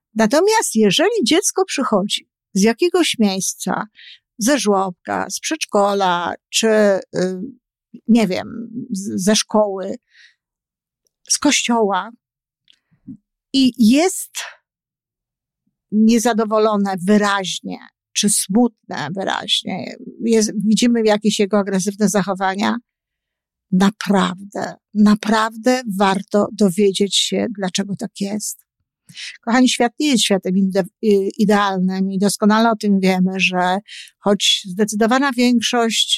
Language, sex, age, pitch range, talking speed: Polish, female, 50-69, 195-230 Hz, 90 wpm